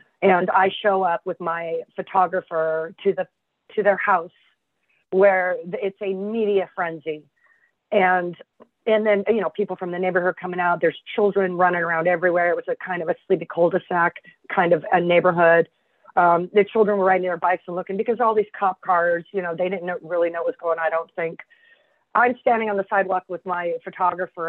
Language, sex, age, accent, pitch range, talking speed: English, female, 30-49, American, 170-215 Hz, 200 wpm